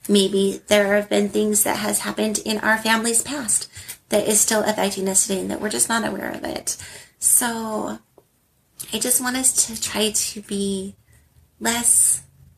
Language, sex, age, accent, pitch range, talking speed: English, female, 30-49, American, 185-230 Hz, 170 wpm